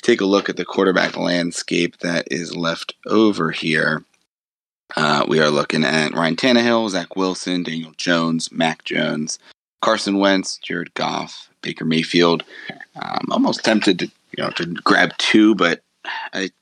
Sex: male